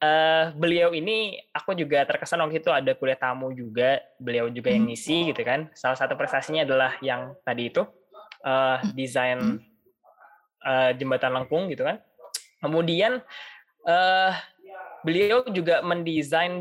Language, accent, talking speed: Indonesian, native, 135 wpm